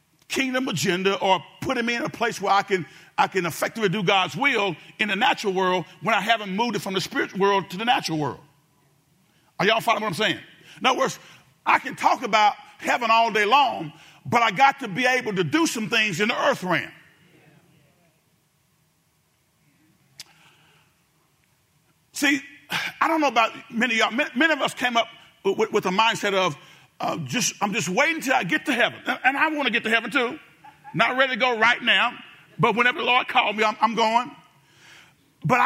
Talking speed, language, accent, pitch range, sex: 200 wpm, English, American, 185-255 Hz, male